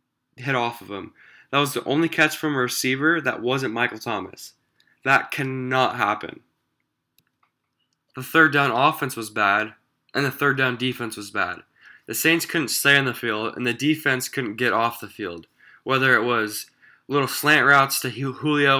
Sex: male